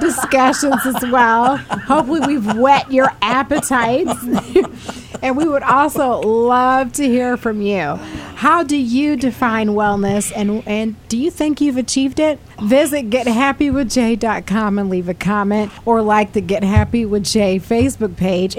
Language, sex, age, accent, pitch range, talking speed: English, female, 40-59, American, 205-260 Hz, 145 wpm